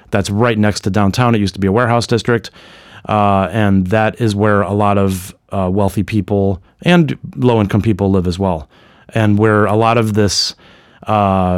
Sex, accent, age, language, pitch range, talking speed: male, American, 30-49, English, 100-115 Hz, 185 wpm